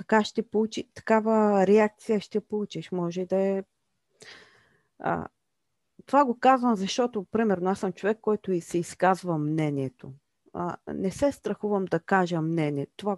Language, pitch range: Bulgarian, 155-215 Hz